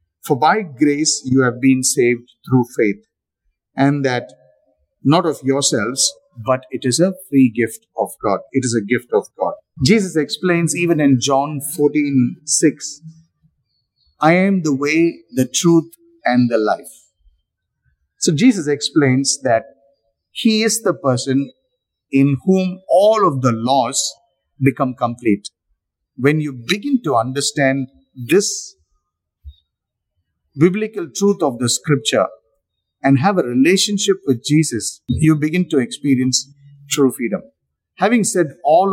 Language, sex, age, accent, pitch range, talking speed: English, male, 50-69, Indian, 125-170 Hz, 130 wpm